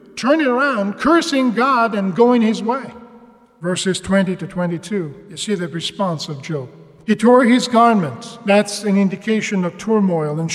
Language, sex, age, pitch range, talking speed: English, male, 50-69, 175-225 Hz, 160 wpm